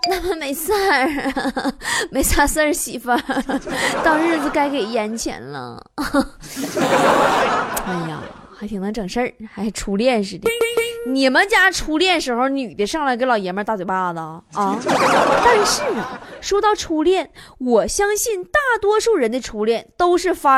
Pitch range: 225-350 Hz